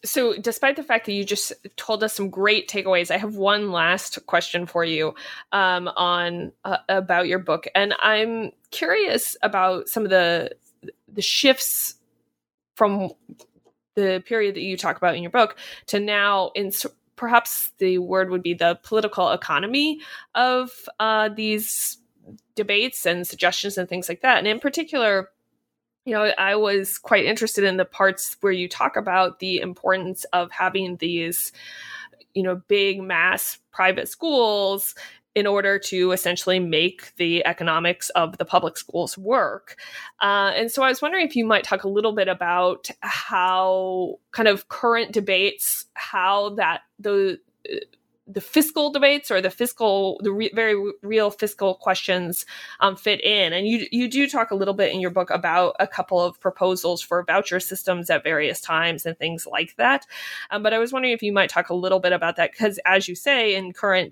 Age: 20-39